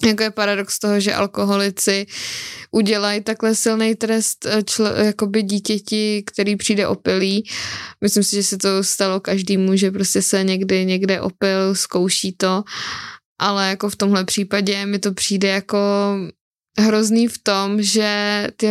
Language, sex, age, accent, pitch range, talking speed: Czech, female, 20-39, native, 195-230 Hz, 140 wpm